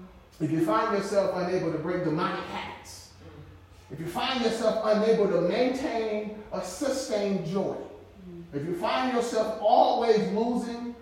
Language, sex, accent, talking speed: English, male, American, 135 wpm